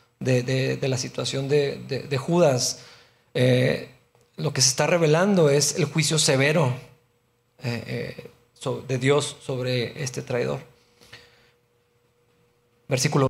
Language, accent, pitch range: Spanish, Mexican, 135-170 Hz